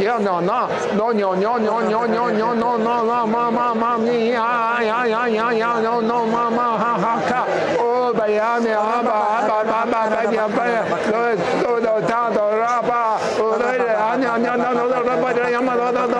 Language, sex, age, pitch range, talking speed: English, male, 60-79, 160-235 Hz, 65 wpm